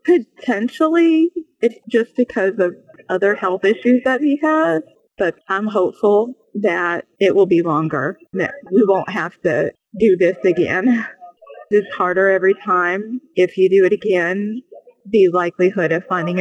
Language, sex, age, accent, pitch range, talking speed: English, female, 30-49, American, 170-215 Hz, 145 wpm